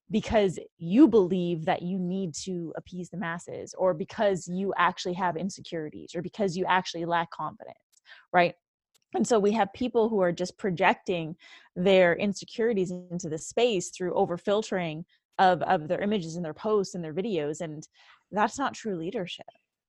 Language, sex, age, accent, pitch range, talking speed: English, female, 20-39, American, 175-220 Hz, 165 wpm